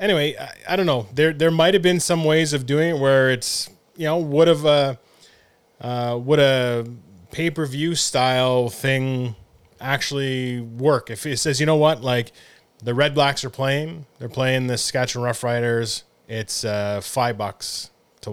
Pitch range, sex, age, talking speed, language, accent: 115-145 Hz, male, 20-39, 165 wpm, English, American